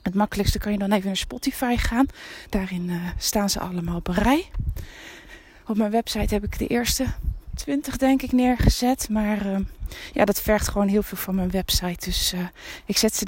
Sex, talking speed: female, 195 wpm